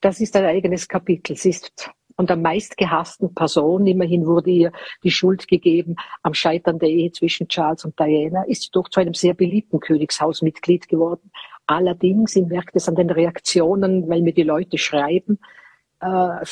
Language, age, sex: German, 50-69, female